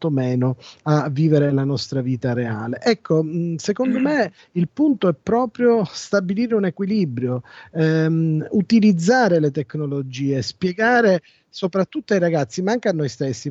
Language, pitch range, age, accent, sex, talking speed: Italian, 150-195 Hz, 40-59, native, male, 135 wpm